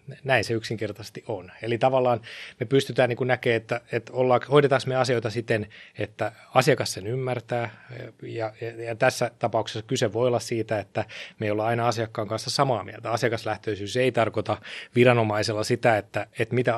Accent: native